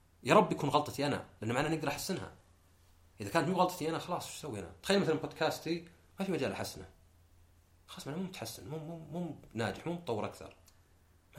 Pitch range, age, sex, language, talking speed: 90-150 Hz, 40-59, male, Arabic, 200 wpm